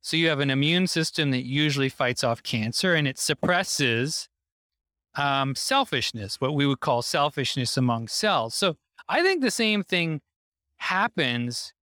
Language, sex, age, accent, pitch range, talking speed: English, male, 30-49, American, 125-170 Hz, 150 wpm